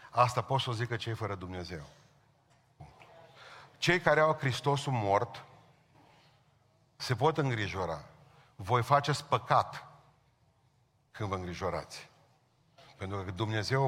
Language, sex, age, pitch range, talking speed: Romanian, male, 40-59, 120-145 Hz, 110 wpm